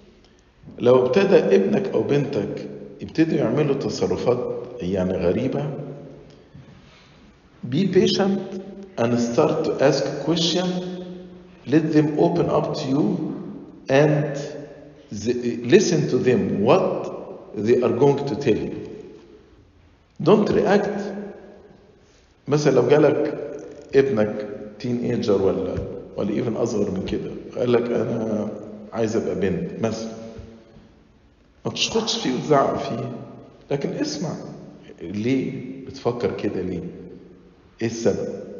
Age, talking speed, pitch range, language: 50-69, 95 wpm, 120-150 Hz, English